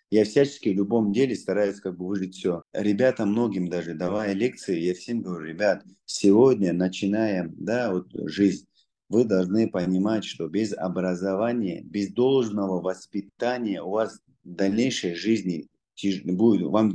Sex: male